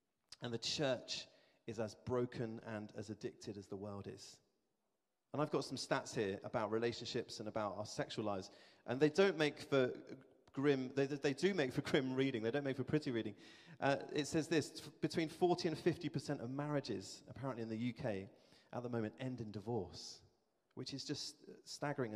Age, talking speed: 30-49, 190 wpm